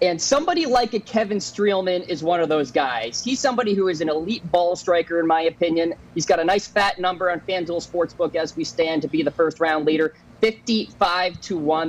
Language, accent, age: English, American, 20-39